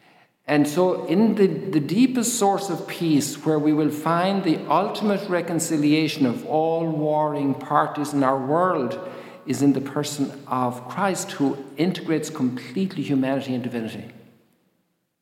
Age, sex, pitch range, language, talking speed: 50-69, male, 130-170 Hz, English, 140 wpm